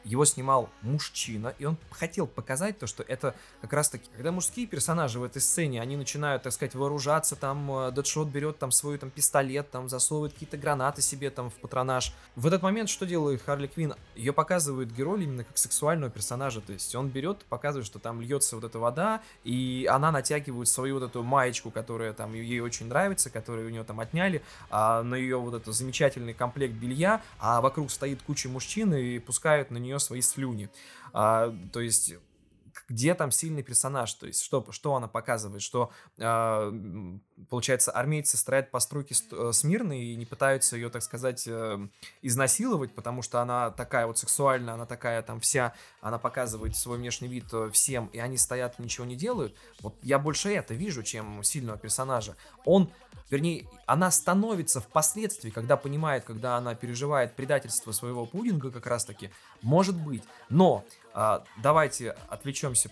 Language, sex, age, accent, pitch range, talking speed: Russian, male, 20-39, native, 115-145 Hz, 170 wpm